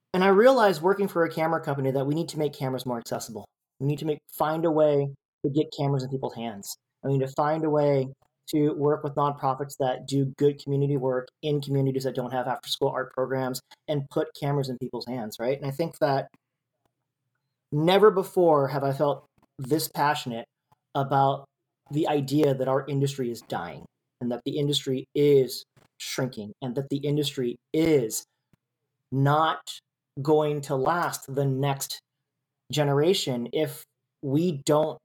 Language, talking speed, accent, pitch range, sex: English, 170 wpm, American, 130-150 Hz, male